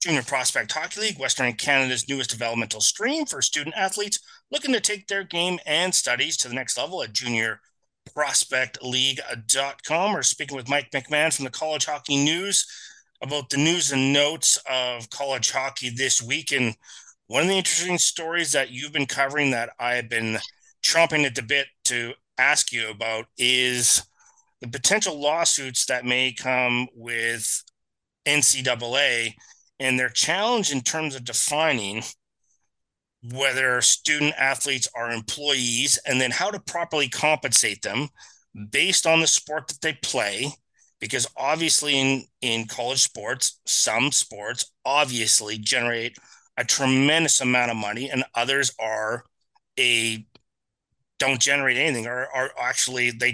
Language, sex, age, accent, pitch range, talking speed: English, male, 30-49, American, 120-150 Hz, 140 wpm